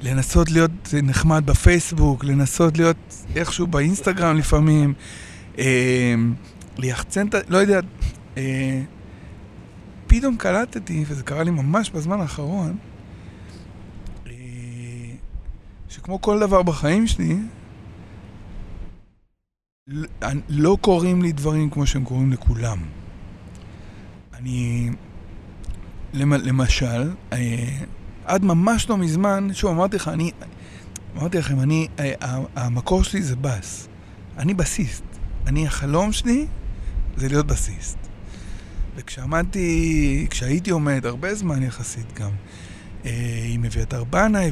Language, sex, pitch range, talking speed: Hebrew, male, 105-160 Hz, 100 wpm